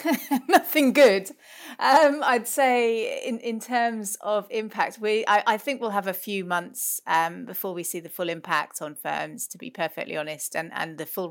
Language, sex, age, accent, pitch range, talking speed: English, female, 30-49, British, 170-205 Hz, 190 wpm